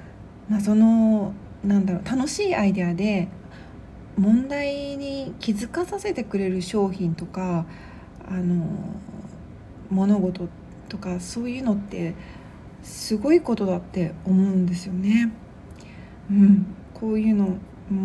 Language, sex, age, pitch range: Japanese, female, 40-59, 180-215 Hz